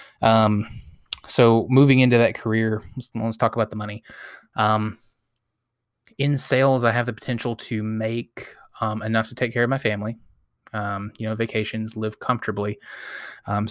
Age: 20-39